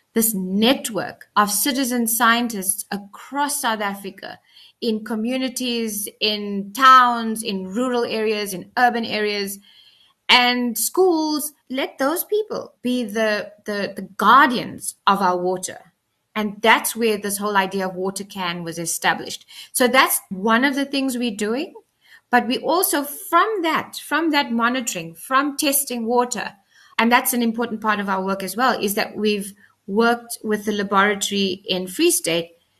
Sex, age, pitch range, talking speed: female, 20-39, 200-260 Hz, 150 wpm